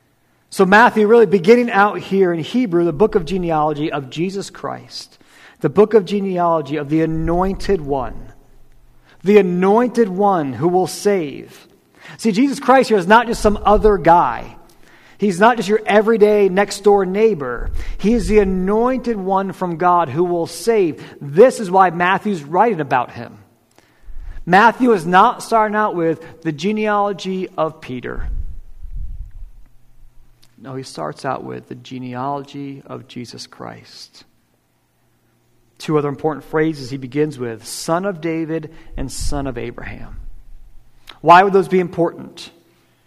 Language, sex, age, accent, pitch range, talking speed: English, male, 40-59, American, 140-205 Hz, 145 wpm